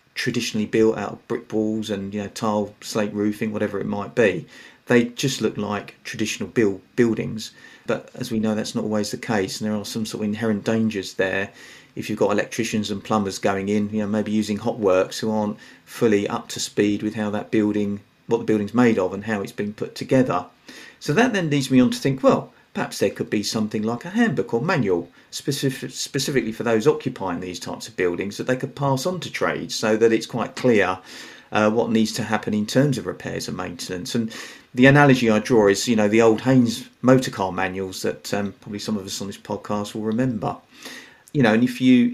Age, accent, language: 40-59, British, English